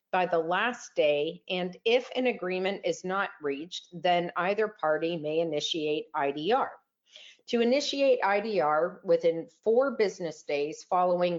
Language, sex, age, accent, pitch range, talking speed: English, female, 40-59, American, 165-215 Hz, 130 wpm